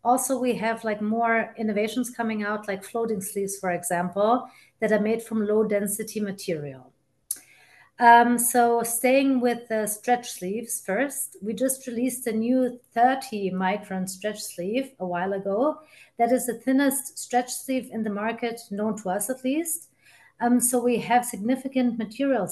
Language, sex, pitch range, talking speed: English, female, 205-250 Hz, 160 wpm